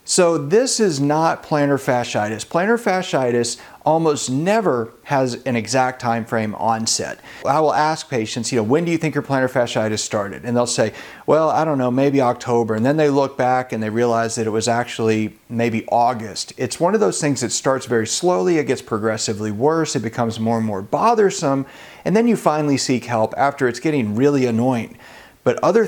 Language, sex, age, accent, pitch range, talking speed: English, male, 40-59, American, 115-150 Hz, 195 wpm